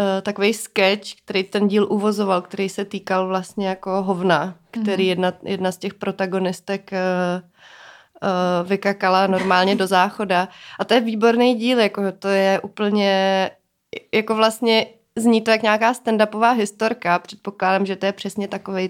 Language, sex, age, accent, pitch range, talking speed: Czech, female, 30-49, native, 185-210 Hz, 150 wpm